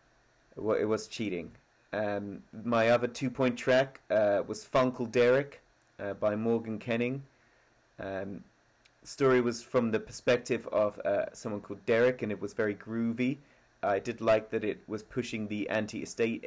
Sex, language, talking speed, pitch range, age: male, English, 155 wpm, 105-125 Hz, 30-49